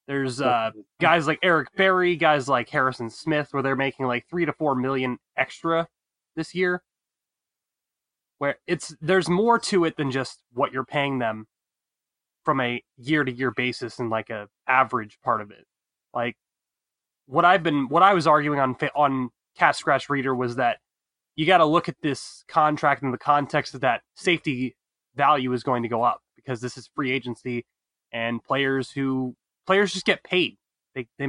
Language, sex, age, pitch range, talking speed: English, male, 20-39, 125-155 Hz, 180 wpm